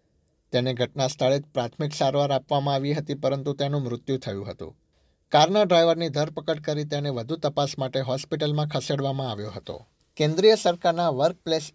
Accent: native